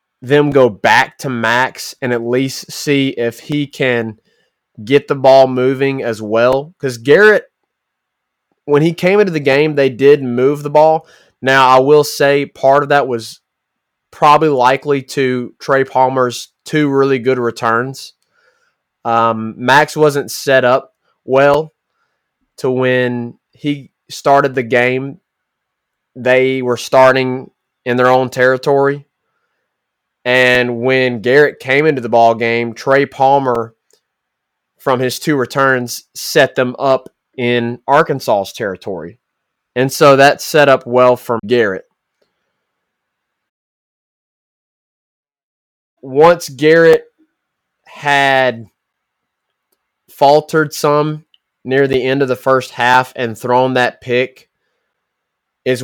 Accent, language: American, English